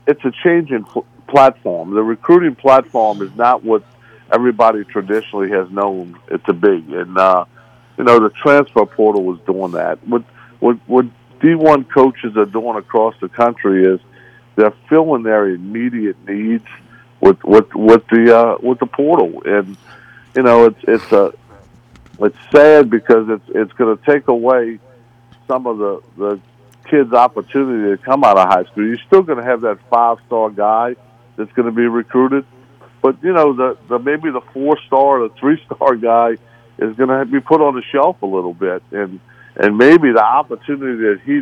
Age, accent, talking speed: 60-79, American, 180 wpm